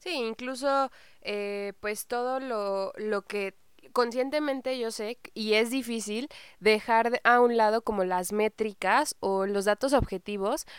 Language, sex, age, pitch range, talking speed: Spanish, female, 20-39, 200-245 Hz, 140 wpm